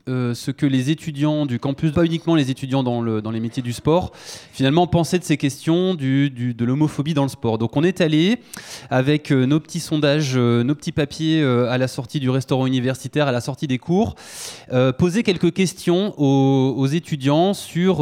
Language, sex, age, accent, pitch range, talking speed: French, male, 20-39, French, 130-170 Hz, 200 wpm